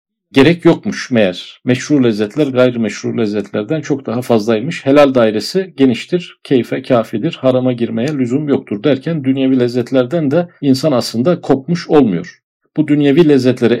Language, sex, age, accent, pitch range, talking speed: Turkish, male, 50-69, native, 120-165 Hz, 135 wpm